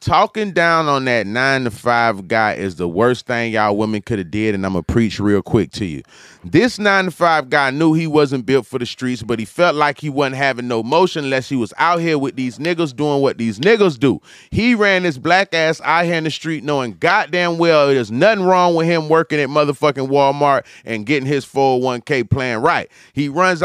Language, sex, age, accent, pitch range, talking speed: English, male, 30-49, American, 130-185 Hz, 230 wpm